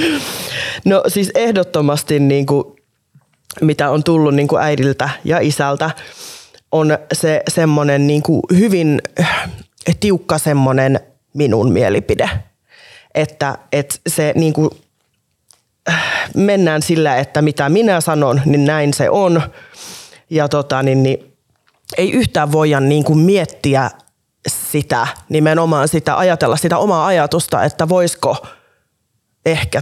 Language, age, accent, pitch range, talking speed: Finnish, 20-39, native, 145-165 Hz, 115 wpm